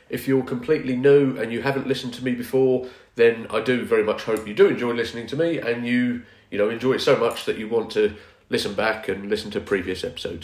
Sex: male